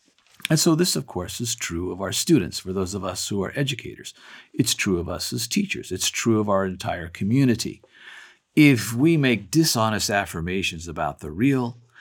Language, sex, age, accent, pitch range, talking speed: English, male, 50-69, American, 90-115 Hz, 185 wpm